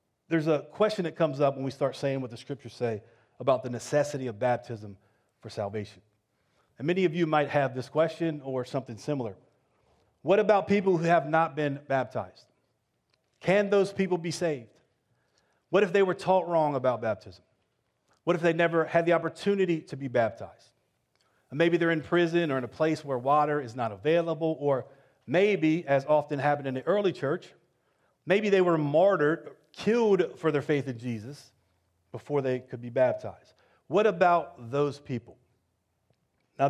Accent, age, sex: American, 40-59, male